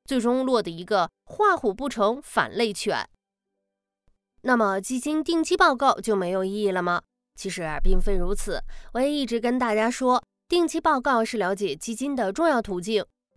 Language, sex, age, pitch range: Chinese, female, 20-39, 200-290 Hz